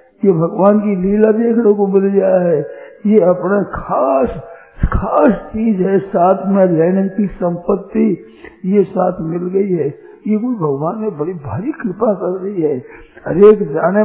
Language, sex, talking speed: Hindi, male, 160 wpm